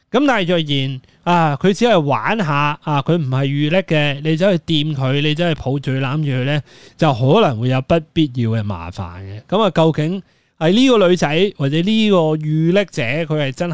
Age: 20-39